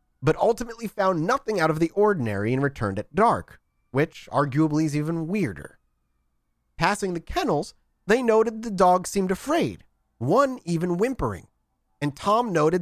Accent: American